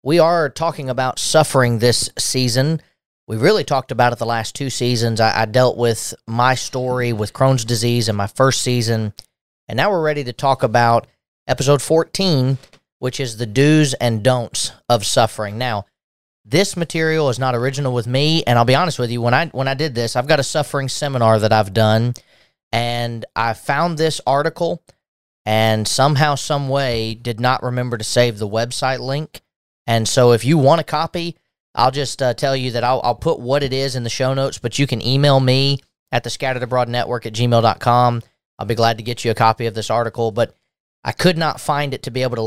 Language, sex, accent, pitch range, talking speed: English, male, American, 115-140 Hz, 205 wpm